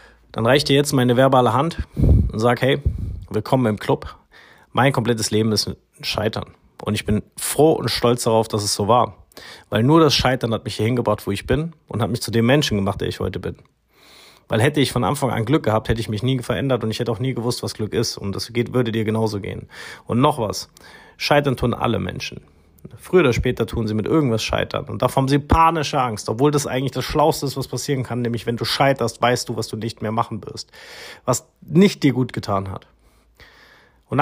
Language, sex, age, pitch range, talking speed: German, male, 30-49, 110-135 Hz, 225 wpm